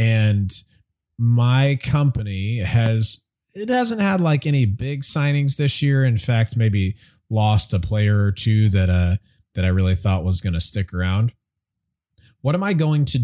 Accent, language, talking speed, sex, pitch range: American, English, 170 wpm, male, 95-125 Hz